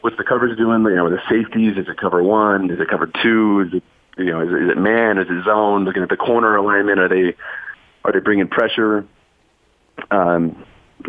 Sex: male